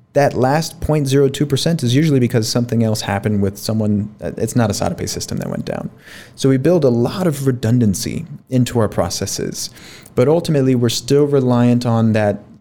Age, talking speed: 30-49, 170 wpm